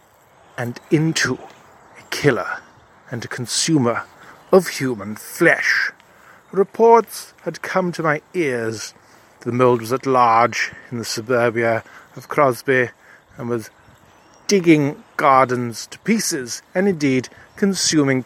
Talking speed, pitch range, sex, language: 115 wpm, 120-150 Hz, male, English